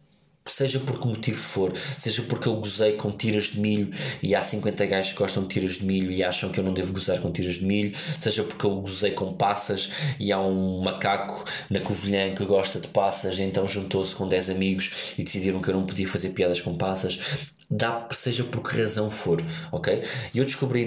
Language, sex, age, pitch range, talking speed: Portuguese, male, 20-39, 95-115 Hz, 215 wpm